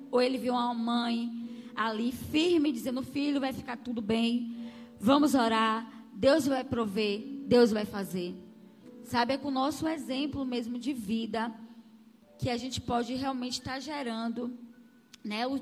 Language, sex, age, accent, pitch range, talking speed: Portuguese, female, 10-29, Brazilian, 220-260 Hz, 150 wpm